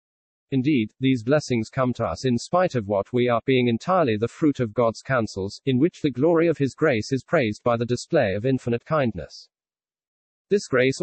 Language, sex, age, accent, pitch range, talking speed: English, male, 40-59, British, 115-145 Hz, 195 wpm